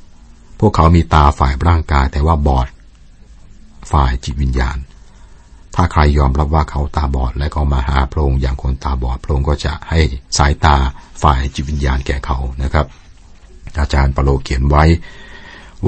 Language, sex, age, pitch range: Thai, male, 60-79, 65-80 Hz